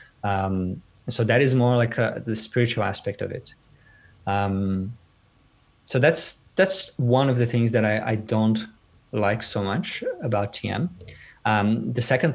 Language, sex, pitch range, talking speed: English, male, 105-120 Hz, 155 wpm